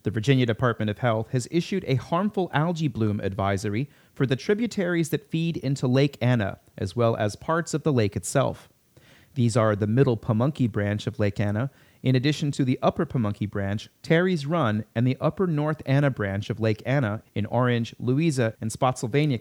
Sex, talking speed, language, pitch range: male, 185 wpm, English, 110-145 Hz